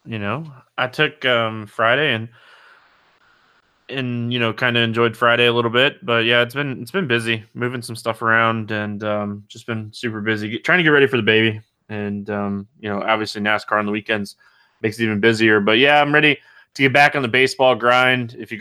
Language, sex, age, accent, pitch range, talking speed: English, male, 20-39, American, 110-145 Hz, 220 wpm